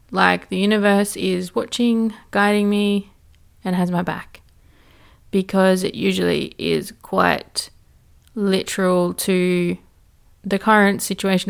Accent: Australian